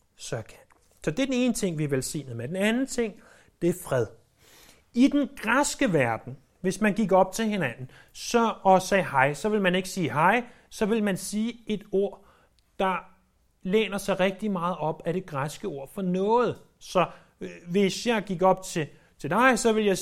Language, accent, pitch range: Danish, native, 155-215 Hz